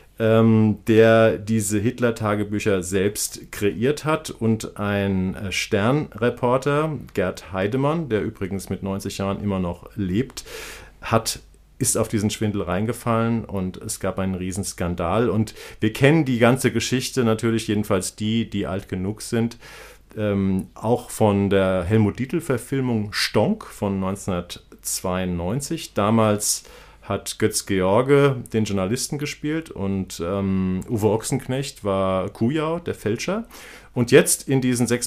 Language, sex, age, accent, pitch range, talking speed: German, male, 40-59, German, 100-125 Hz, 120 wpm